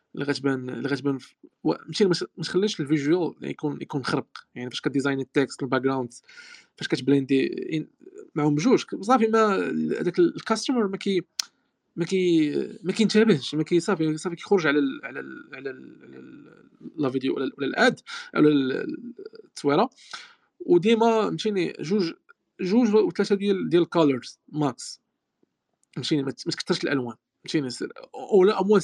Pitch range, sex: 145-215 Hz, male